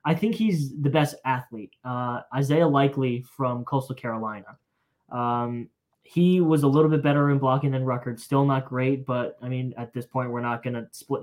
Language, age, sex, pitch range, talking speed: English, 10-29, male, 120-135 Hz, 200 wpm